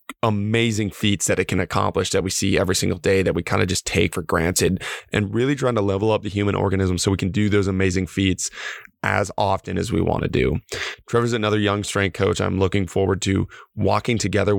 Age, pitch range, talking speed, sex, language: 20-39, 90-110 Hz, 220 wpm, male, English